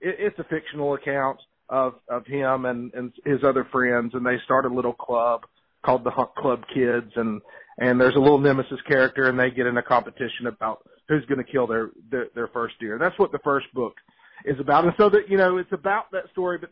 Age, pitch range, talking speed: 40-59, 130-165 Hz, 230 wpm